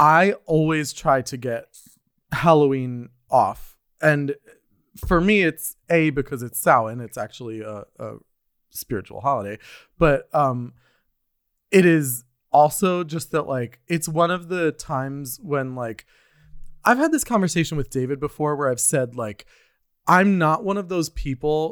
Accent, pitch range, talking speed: American, 125-160 Hz, 145 wpm